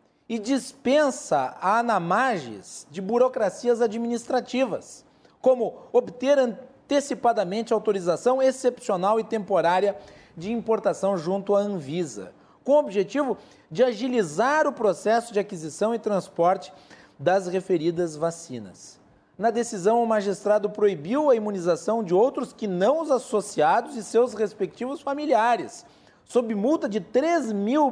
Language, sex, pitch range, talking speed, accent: Portuguese, male, 195-270 Hz, 120 wpm, Brazilian